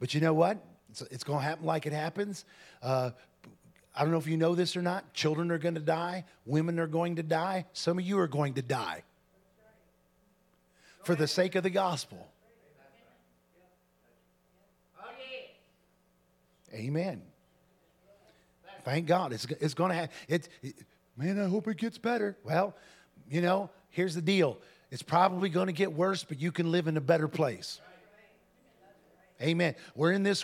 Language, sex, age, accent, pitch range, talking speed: English, male, 40-59, American, 145-180 Hz, 160 wpm